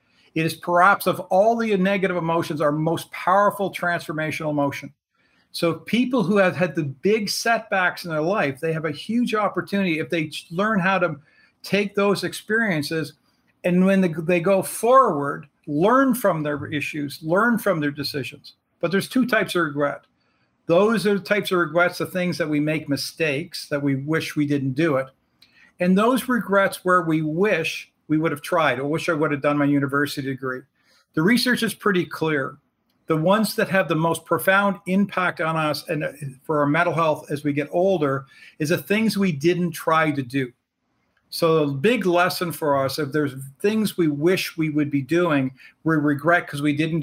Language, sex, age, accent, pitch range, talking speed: English, male, 50-69, American, 150-190 Hz, 185 wpm